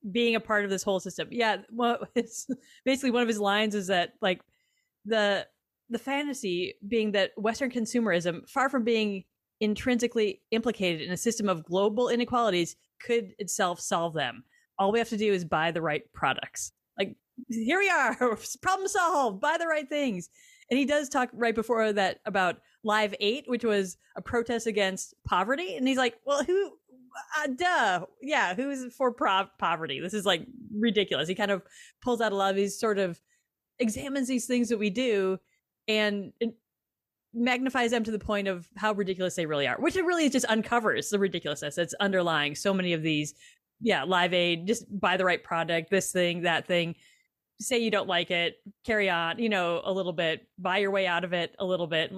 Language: English